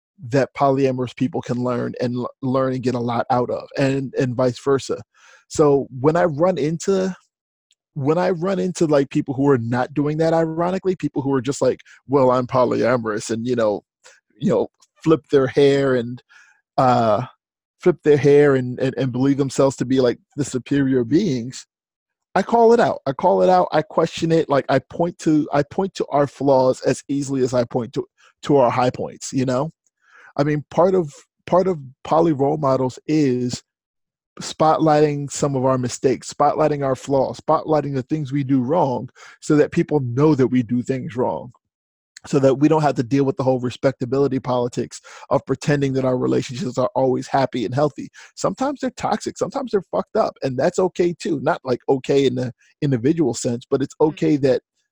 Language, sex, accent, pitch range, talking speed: English, male, American, 130-155 Hz, 190 wpm